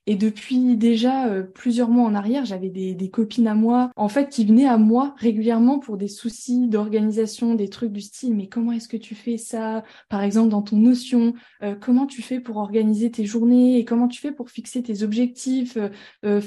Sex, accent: female, French